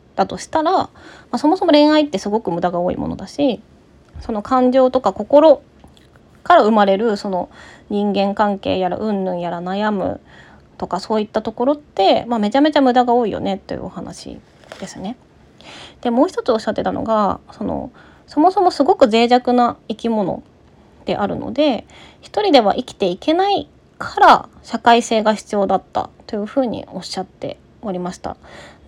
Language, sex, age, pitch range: Japanese, female, 20-39, 195-285 Hz